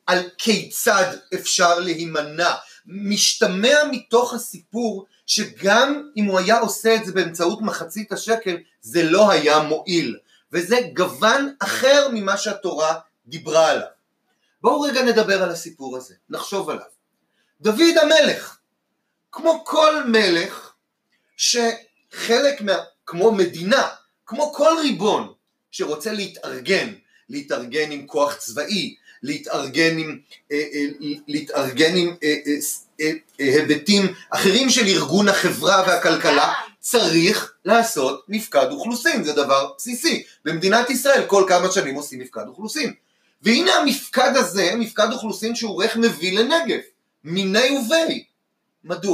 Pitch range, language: 165-235 Hz, Hebrew